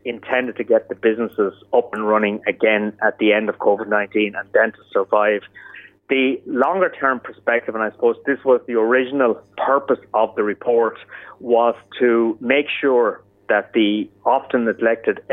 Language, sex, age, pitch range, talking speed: English, male, 30-49, 110-130 Hz, 160 wpm